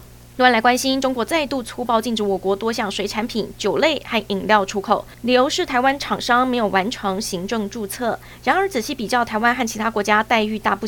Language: Chinese